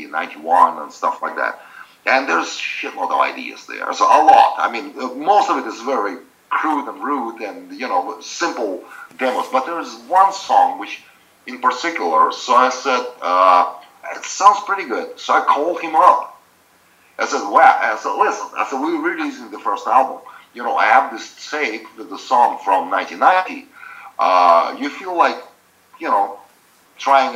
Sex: male